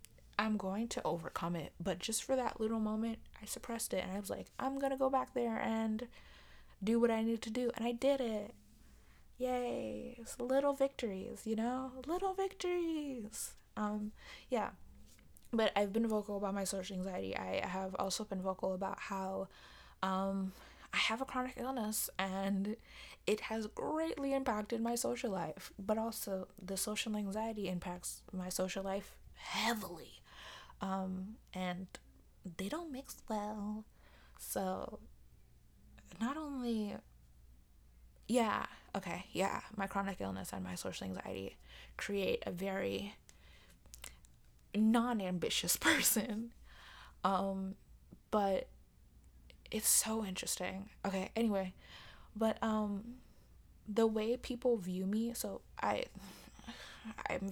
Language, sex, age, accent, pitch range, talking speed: English, female, 20-39, American, 190-230 Hz, 130 wpm